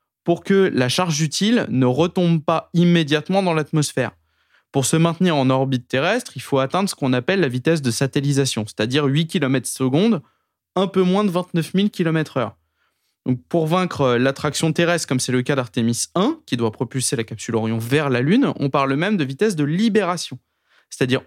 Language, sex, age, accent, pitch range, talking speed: French, male, 20-39, French, 135-190 Hz, 185 wpm